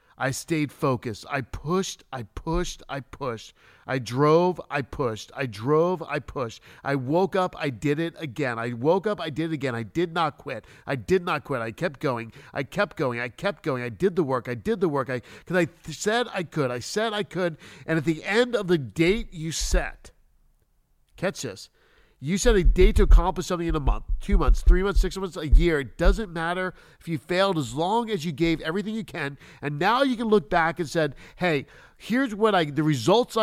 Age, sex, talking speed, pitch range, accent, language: 50-69, male, 220 wpm, 145-195 Hz, American, English